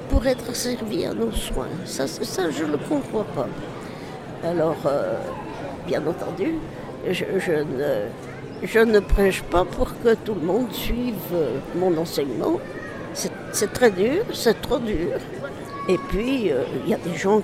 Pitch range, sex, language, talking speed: 185-270 Hz, female, French, 160 wpm